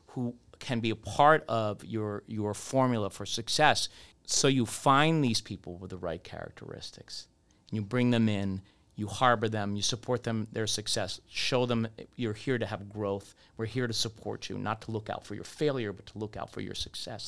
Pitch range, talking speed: 105-125 Hz, 200 wpm